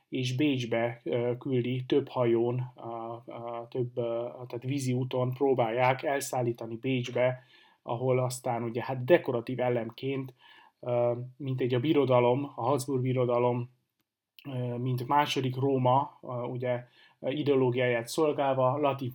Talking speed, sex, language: 100 wpm, male, Hungarian